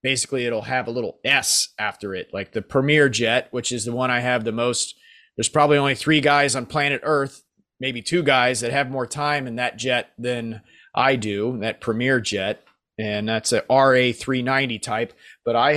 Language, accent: English, American